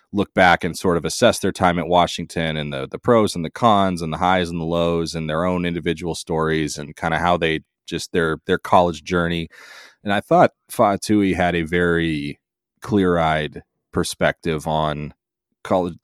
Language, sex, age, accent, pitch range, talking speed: English, male, 30-49, American, 80-90 Hz, 185 wpm